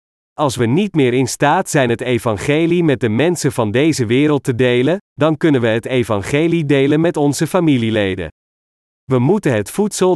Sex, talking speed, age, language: male, 175 wpm, 40-59, Dutch